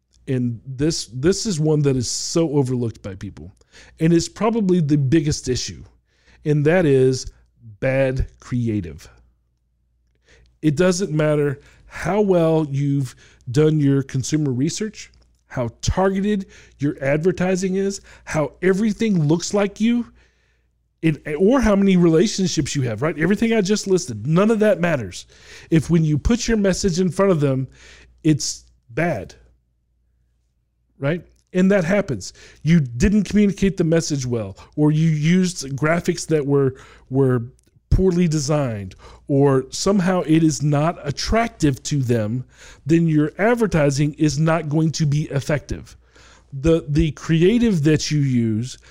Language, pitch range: English, 130-180 Hz